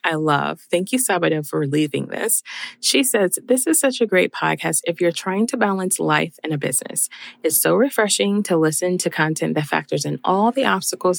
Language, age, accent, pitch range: English, 20-39, American, 155-195 Hz